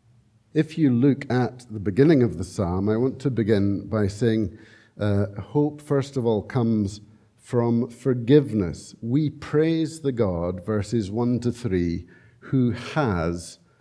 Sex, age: male, 60-79